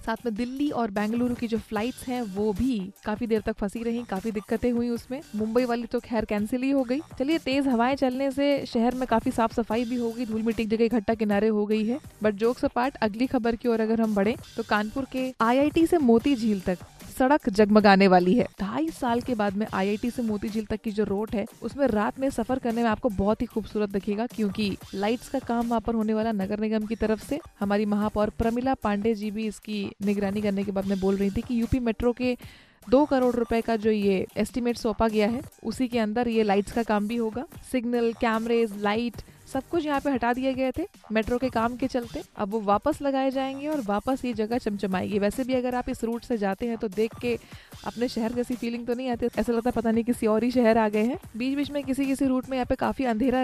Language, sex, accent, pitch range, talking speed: Hindi, female, native, 215-255 Hz, 240 wpm